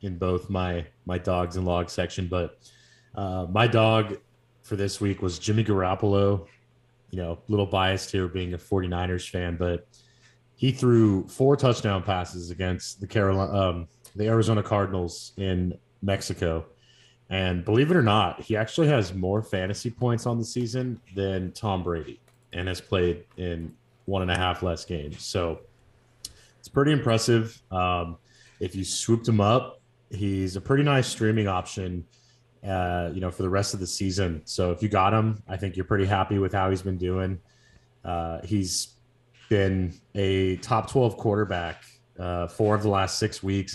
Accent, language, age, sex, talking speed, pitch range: American, English, 30-49, male, 170 wpm, 90-110 Hz